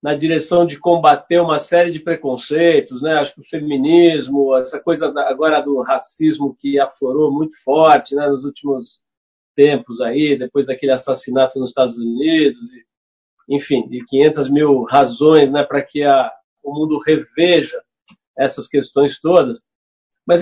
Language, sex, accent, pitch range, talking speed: Portuguese, male, Brazilian, 145-185 Hz, 145 wpm